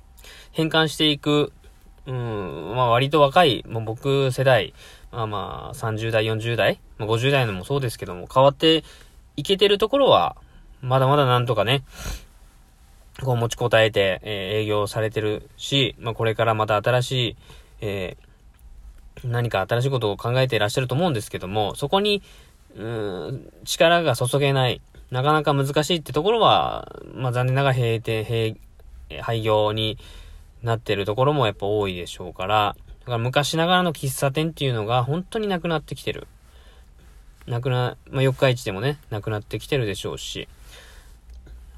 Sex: male